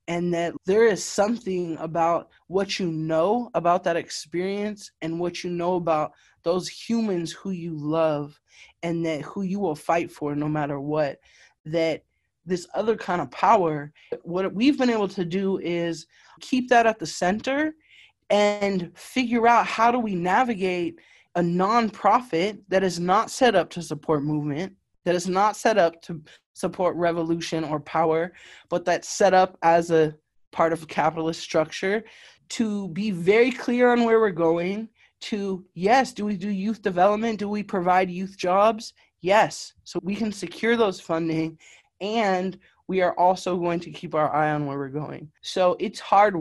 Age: 20-39